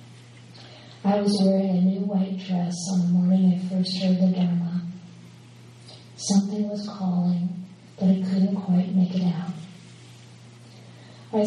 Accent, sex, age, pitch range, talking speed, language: American, female, 30-49, 170-195 Hz, 135 wpm, English